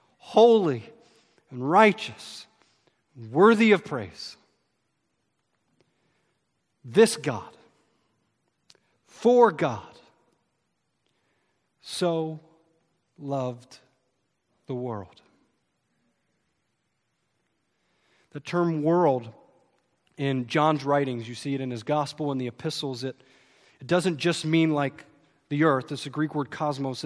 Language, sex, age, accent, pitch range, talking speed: English, male, 40-59, American, 135-165 Hz, 95 wpm